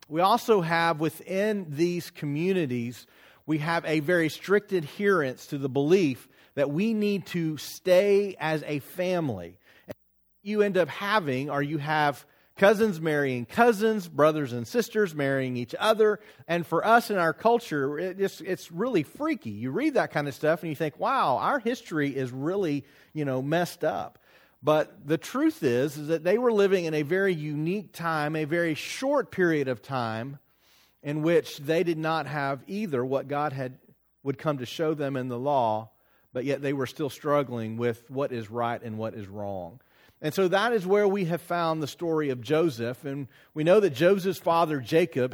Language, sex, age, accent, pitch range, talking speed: English, male, 40-59, American, 140-180 Hz, 185 wpm